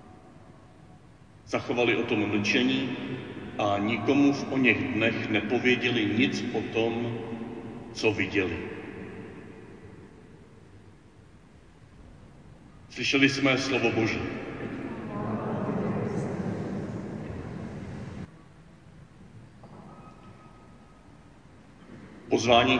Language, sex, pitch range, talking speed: Czech, male, 110-130 Hz, 55 wpm